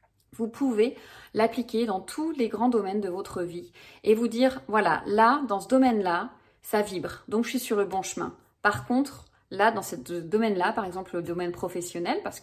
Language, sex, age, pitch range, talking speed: French, female, 30-49, 185-240 Hz, 205 wpm